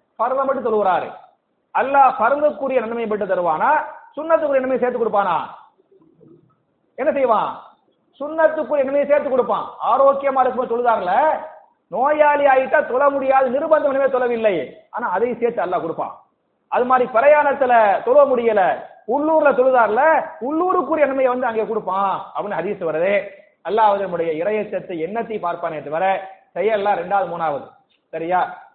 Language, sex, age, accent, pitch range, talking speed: English, male, 30-49, Indian, 175-265 Hz, 110 wpm